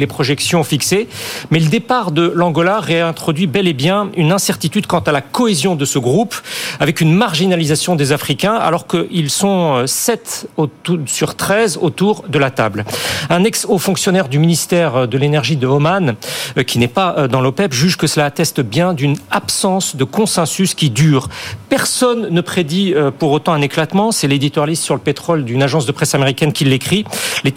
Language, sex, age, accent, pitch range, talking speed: French, male, 40-59, French, 150-195 Hz, 180 wpm